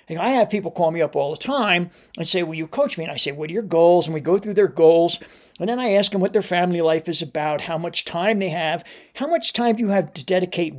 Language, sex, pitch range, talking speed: English, male, 165-220 Hz, 290 wpm